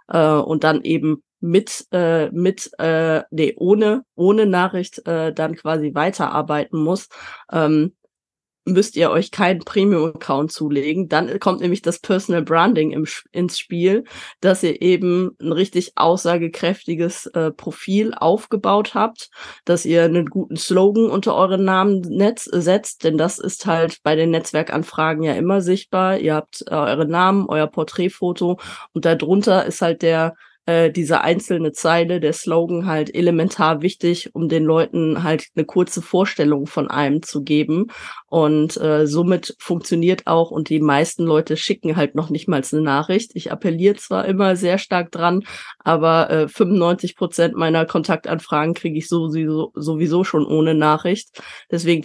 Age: 20-39